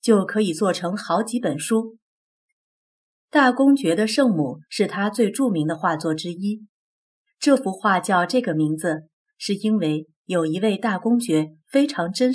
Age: 30-49